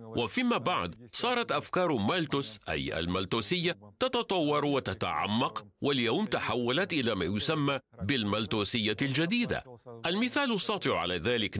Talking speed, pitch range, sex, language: 105 wpm, 115-190 Hz, male, English